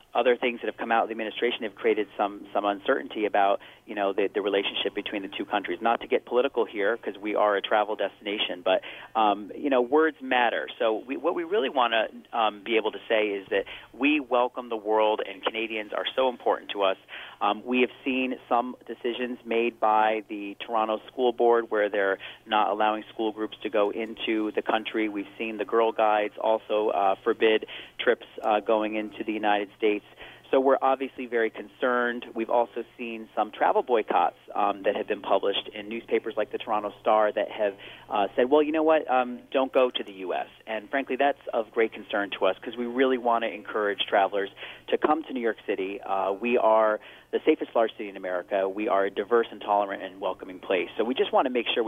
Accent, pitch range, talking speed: American, 105-125 Hz, 215 wpm